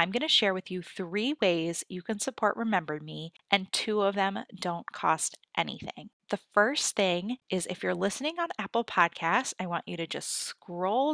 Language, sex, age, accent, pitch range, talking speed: English, female, 20-39, American, 175-230 Hz, 195 wpm